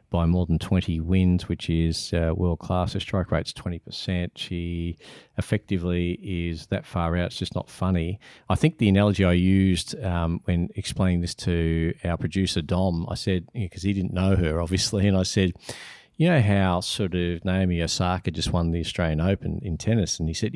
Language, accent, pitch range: English, Australian, 85-100 Hz